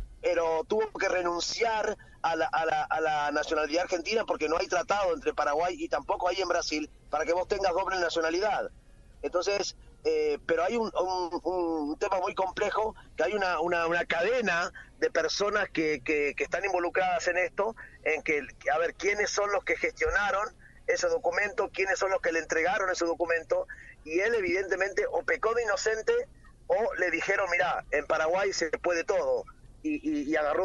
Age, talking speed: 30-49, 180 wpm